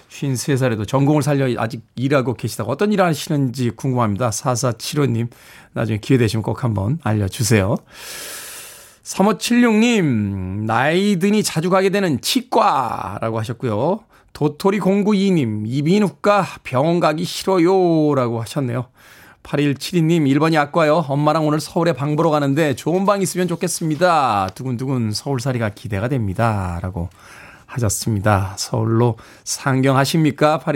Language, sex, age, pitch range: Korean, male, 20-39, 125-170 Hz